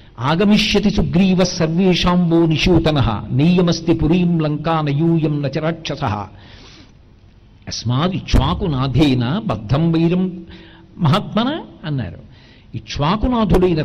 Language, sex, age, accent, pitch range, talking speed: Telugu, male, 60-79, native, 135-205 Hz, 65 wpm